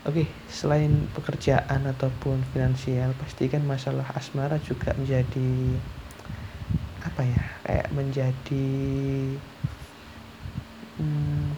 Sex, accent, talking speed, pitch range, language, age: male, native, 85 wpm, 125-145 Hz, Indonesian, 20-39